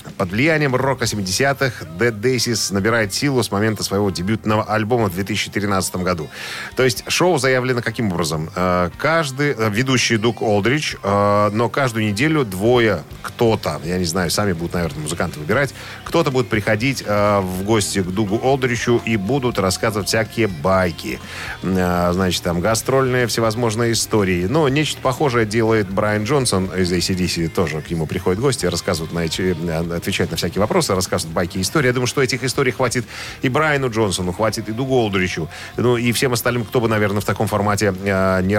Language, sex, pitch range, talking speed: Russian, male, 95-120 Hz, 165 wpm